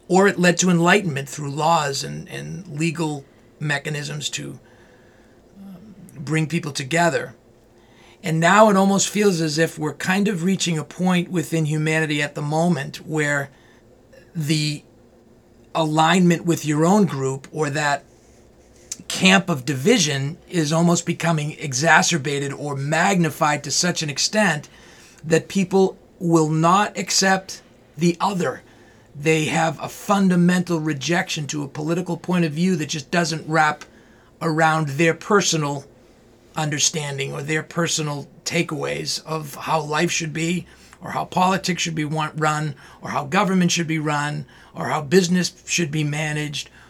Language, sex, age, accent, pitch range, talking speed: English, male, 40-59, American, 150-175 Hz, 140 wpm